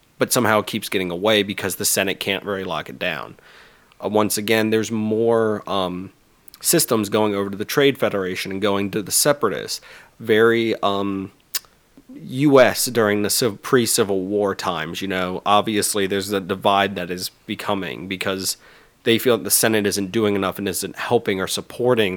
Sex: male